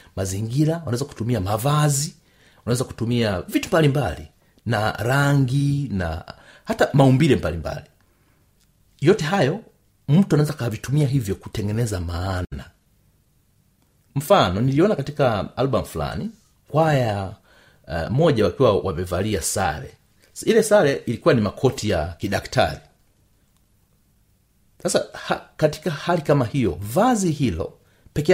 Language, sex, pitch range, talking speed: Swahili, male, 100-140 Hz, 105 wpm